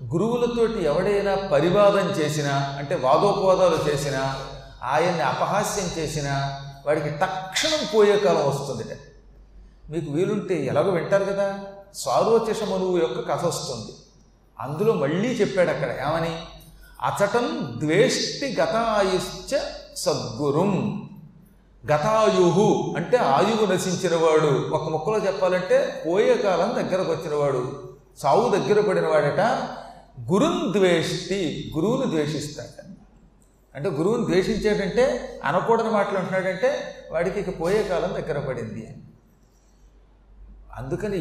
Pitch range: 150-200 Hz